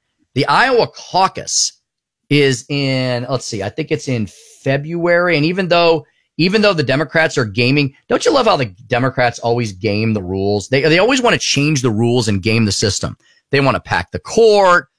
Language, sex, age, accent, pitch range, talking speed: English, male, 30-49, American, 115-160 Hz, 195 wpm